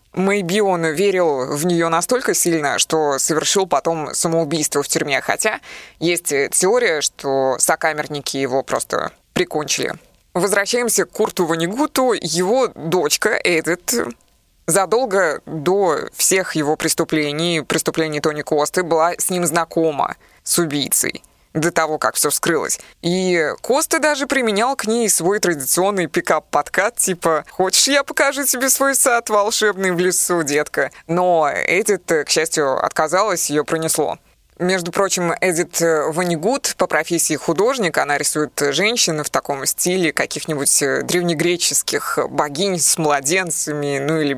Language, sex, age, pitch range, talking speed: Russian, female, 20-39, 155-185 Hz, 125 wpm